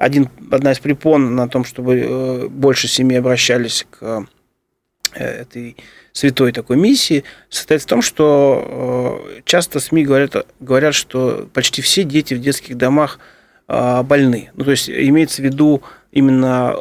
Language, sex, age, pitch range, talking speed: Russian, male, 30-49, 125-145 Hz, 130 wpm